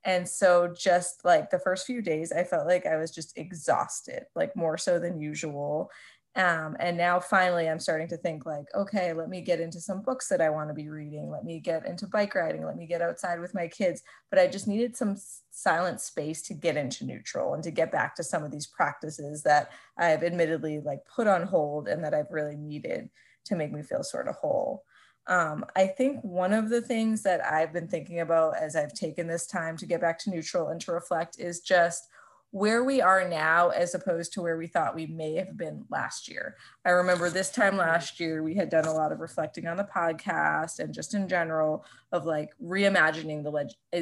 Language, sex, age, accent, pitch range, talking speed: English, female, 20-39, American, 160-195 Hz, 220 wpm